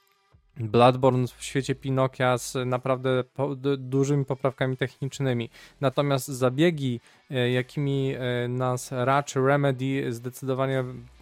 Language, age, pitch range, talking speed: Polish, 20-39, 130-155 Hz, 85 wpm